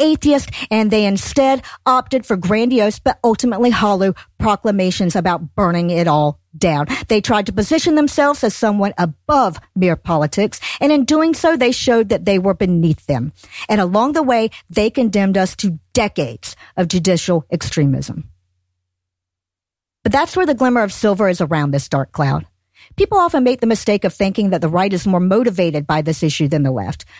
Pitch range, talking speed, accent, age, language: 170-250 Hz, 175 wpm, American, 50-69, English